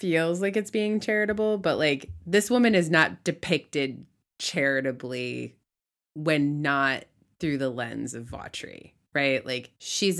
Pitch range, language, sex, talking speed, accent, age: 130-165 Hz, English, female, 135 wpm, American, 20-39